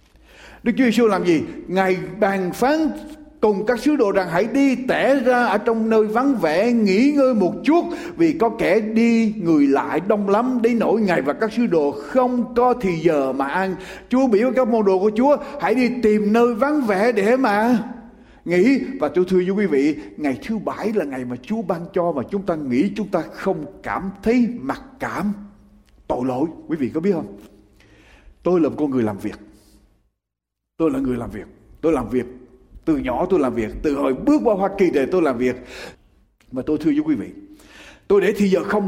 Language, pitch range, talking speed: Vietnamese, 160-255 Hz, 210 wpm